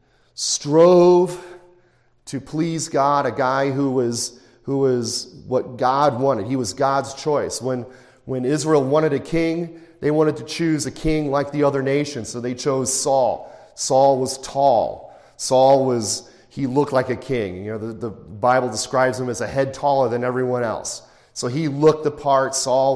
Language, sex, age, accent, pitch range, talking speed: English, male, 40-59, American, 120-140 Hz, 175 wpm